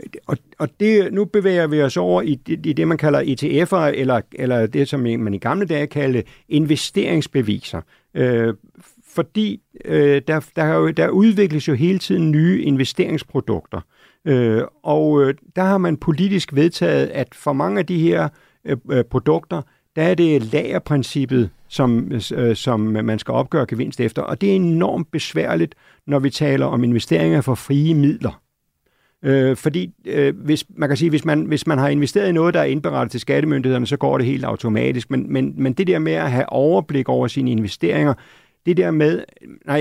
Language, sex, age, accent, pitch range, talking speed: Danish, male, 60-79, native, 120-160 Hz, 175 wpm